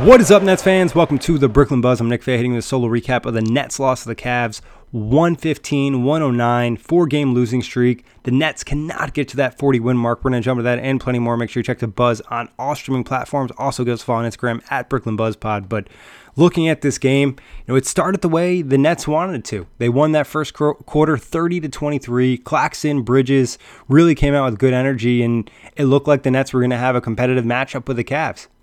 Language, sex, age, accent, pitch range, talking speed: English, male, 20-39, American, 120-145 Hz, 230 wpm